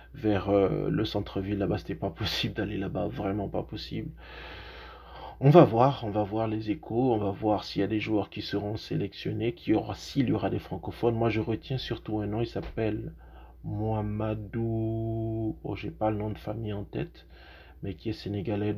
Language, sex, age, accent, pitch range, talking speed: French, male, 30-49, French, 100-110 Hz, 200 wpm